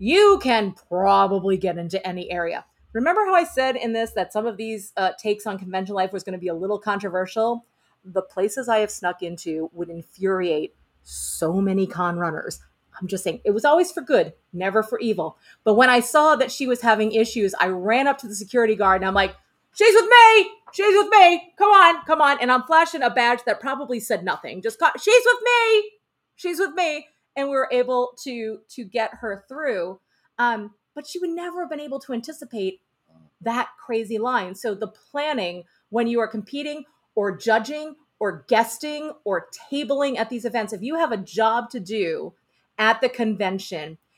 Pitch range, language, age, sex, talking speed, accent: 195-295 Hz, English, 30-49, female, 195 wpm, American